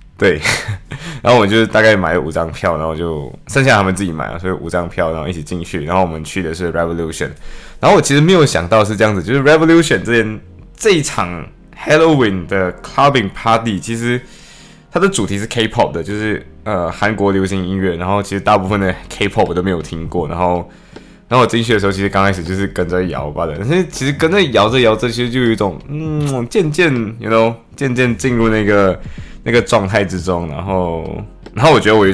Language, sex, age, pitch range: Chinese, male, 20-39, 90-115 Hz